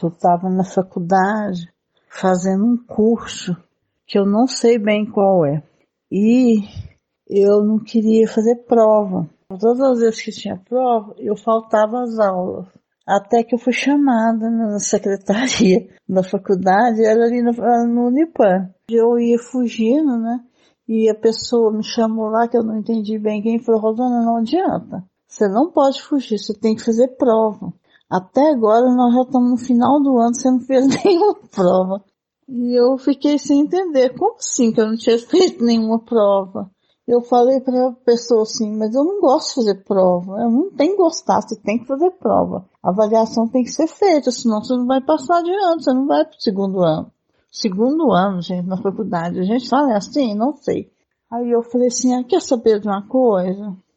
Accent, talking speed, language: Brazilian, 185 wpm, Portuguese